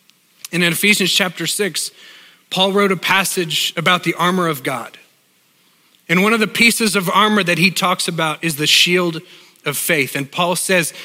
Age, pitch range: 40-59, 155-185 Hz